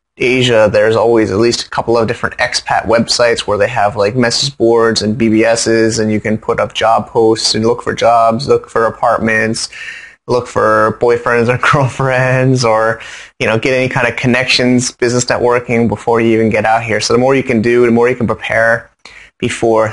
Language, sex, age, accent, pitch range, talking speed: English, male, 20-39, American, 110-130 Hz, 200 wpm